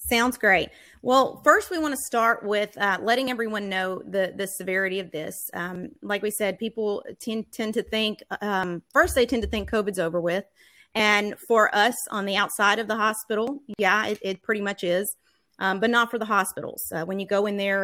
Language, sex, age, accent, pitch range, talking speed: English, female, 30-49, American, 185-225 Hz, 210 wpm